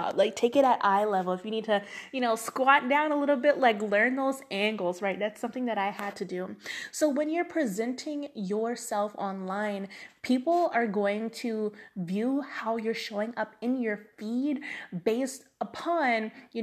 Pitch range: 205-245 Hz